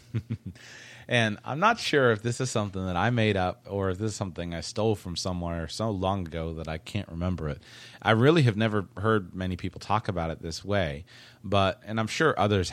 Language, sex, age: English, male, 30-49